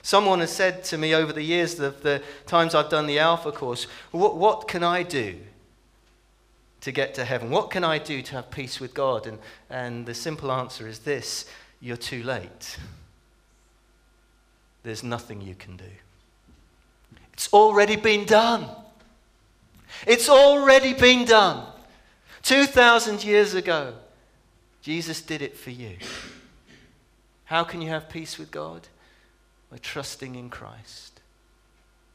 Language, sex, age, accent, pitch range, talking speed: English, male, 40-59, British, 110-165 Hz, 145 wpm